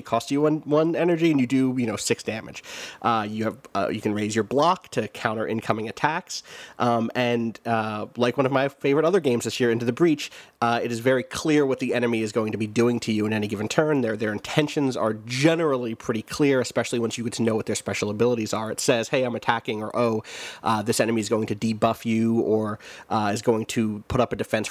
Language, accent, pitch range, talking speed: English, American, 110-130 Hz, 245 wpm